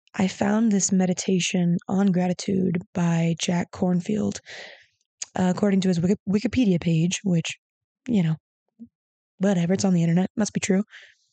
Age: 20-39